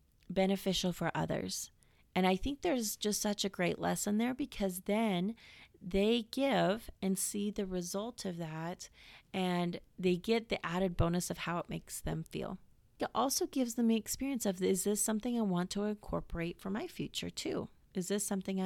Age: 30-49